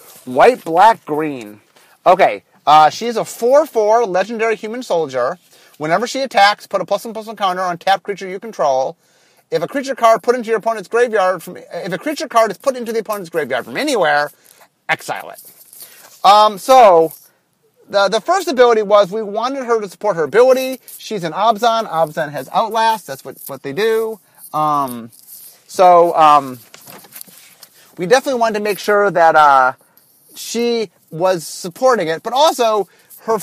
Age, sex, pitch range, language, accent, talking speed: 30-49, male, 175-240 Hz, English, American, 165 wpm